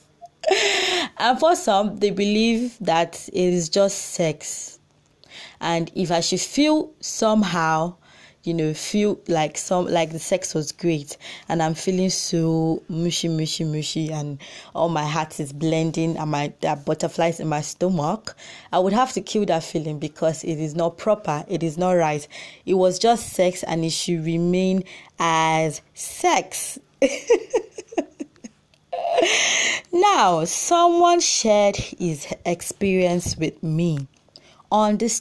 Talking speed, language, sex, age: 140 wpm, English, female, 20-39